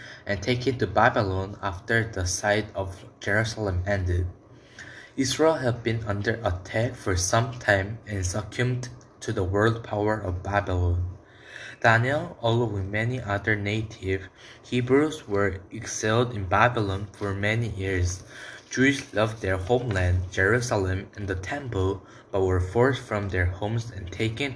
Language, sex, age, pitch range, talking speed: English, male, 20-39, 95-120 Hz, 140 wpm